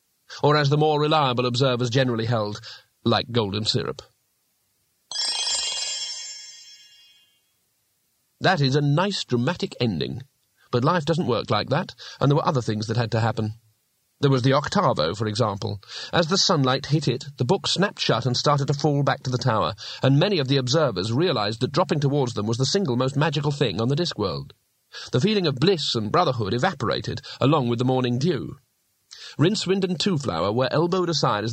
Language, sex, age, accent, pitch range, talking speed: English, male, 40-59, British, 120-155 Hz, 175 wpm